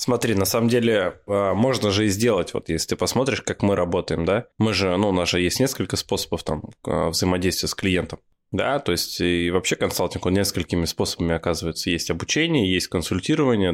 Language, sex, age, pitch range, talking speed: Russian, male, 20-39, 90-110 Hz, 185 wpm